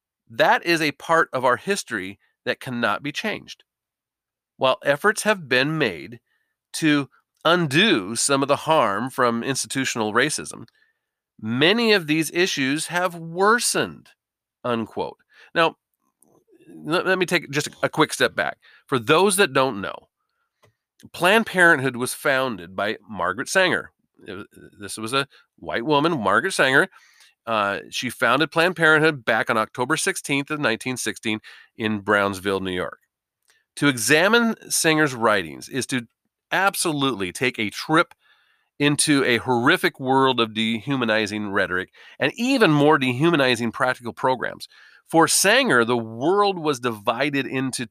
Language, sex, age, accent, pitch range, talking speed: English, male, 40-59, American, 120-170 Hz, 130 wpm